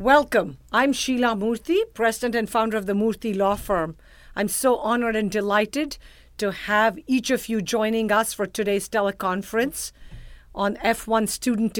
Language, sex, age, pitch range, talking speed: English, female, 50-69, 195-225 Hz, 155 wpm